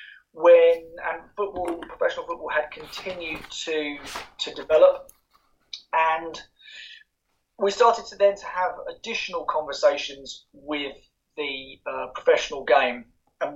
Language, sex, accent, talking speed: English, male, British, 110 wpm